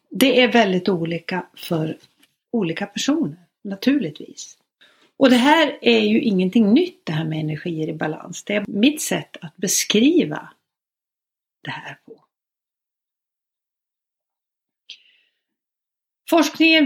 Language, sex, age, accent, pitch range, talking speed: Swedish, female, 60-79, native, 175-265 Hz, 110 wpm